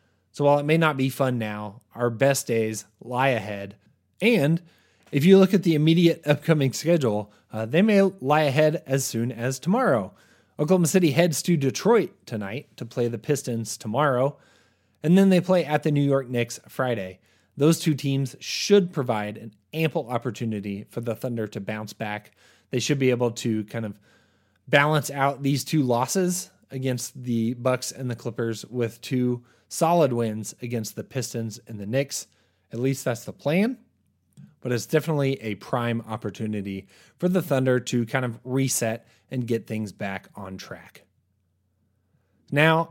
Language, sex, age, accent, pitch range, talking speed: English, male, 30-49, American, 110-150 Hz, 165 wpm